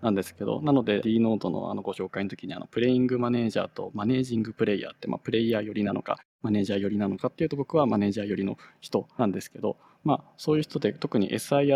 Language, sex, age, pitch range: Japanese, male, 20-39, 100-130 Hz